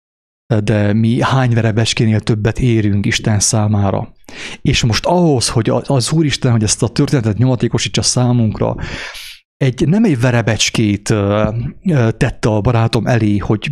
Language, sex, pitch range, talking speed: English, male, 110-145 Hz, 130 wpm